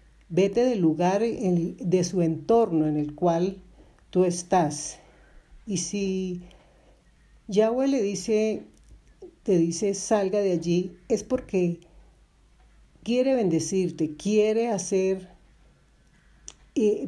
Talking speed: 100 wpm